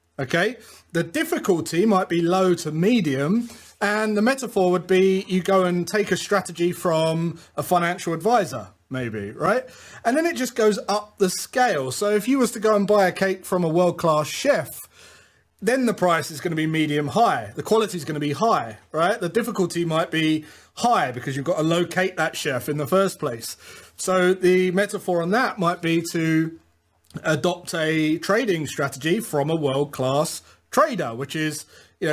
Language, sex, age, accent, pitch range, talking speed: English, male, 30-49, British, 150-195 Hz, 185 wpm